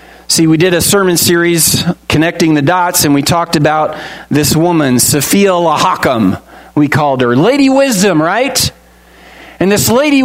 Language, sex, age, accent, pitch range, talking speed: English, male, 40-59, American, 150-235 Hz, 150 wpm